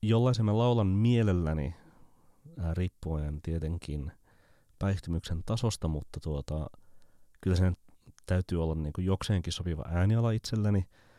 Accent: native